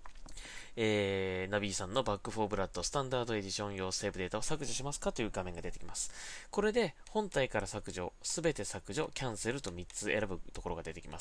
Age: 20-39